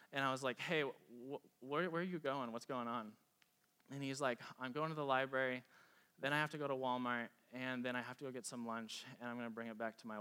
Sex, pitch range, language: male, 120-155 Hz, English